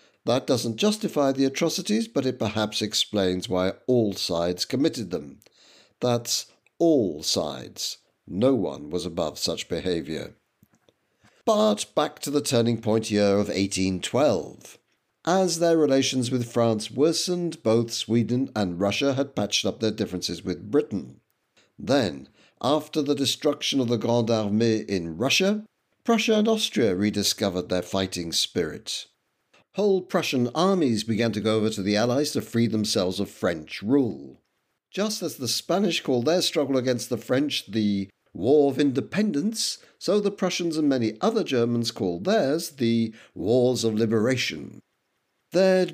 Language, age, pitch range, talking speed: English, 60-79, 110-165 Hz, 145 wpm